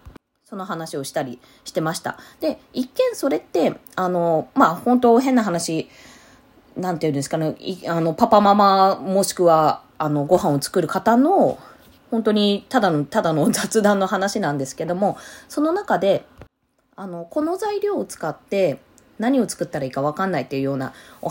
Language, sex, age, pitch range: Japanese, female, 20-39, 170-270 Hz